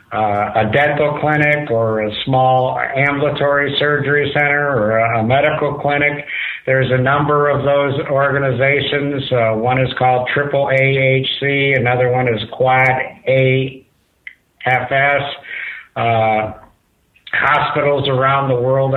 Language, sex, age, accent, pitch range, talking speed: English, male, 60-79, American, 125-145 Hz, 115 wpm